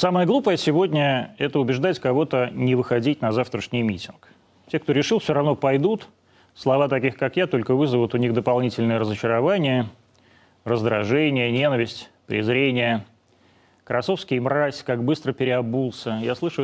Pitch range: 120-150 Hz